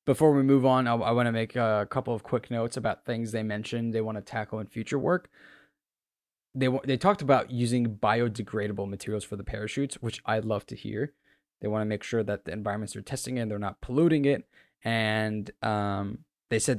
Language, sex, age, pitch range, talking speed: English, male, 20-39, 105-125 Hz, 215 wpm